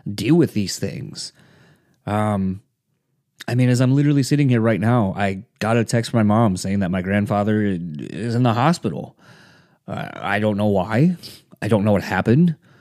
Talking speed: 185 wpm